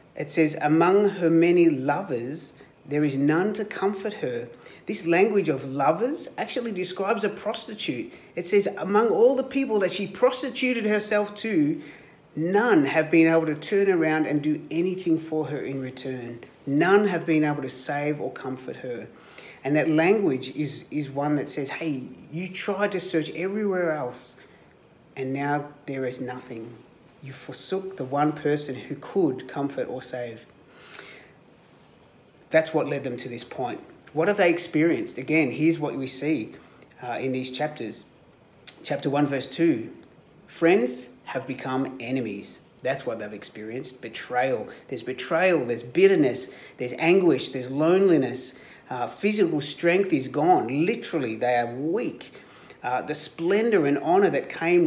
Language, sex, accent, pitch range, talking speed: English, male, Australian, 130-190 Hz, 155 wpm